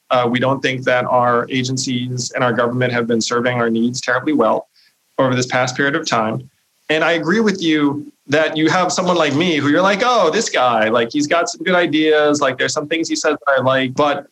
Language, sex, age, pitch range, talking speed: English, male, 40-59, 125-155 Hz, 235 wpm